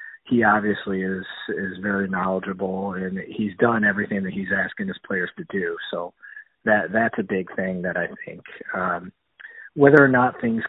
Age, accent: 30-49, American